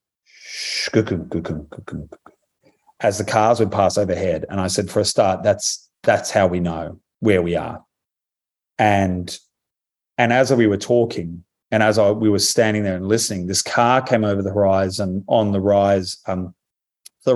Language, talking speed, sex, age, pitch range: English, 160 wpm, male, 30-49, 95-120 Hz